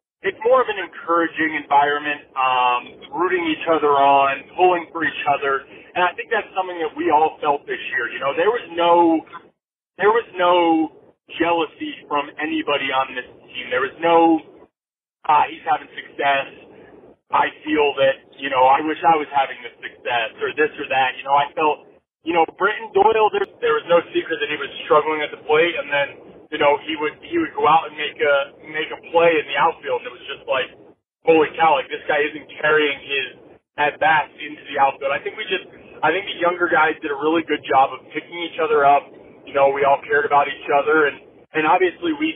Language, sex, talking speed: English, male, 215 wpm